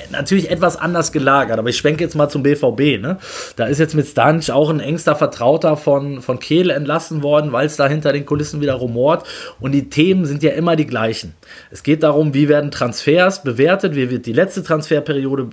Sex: male